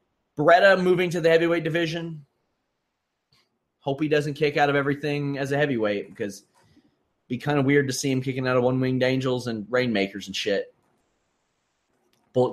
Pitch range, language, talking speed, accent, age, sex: 125-165 Hz, English, 170 wpm, American, 30-49, male